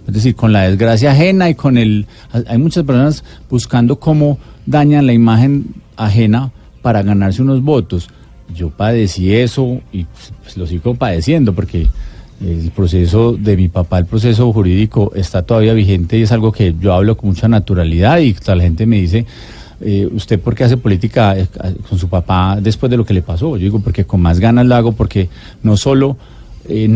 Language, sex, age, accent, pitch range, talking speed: Spanish, male, 30-49, Colombian, 100-130 Hz, 180 wpm